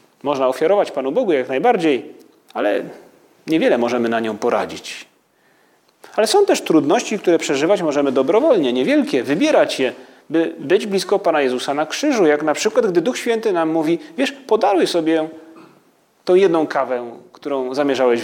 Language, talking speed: Polish, 150 wpm